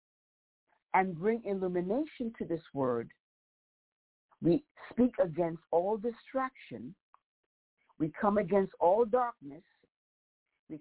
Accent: American